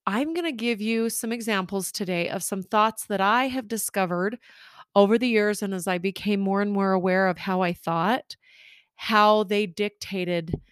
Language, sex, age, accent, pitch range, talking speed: English, female, 30-49, American, 175-210 Hz, 185 wpm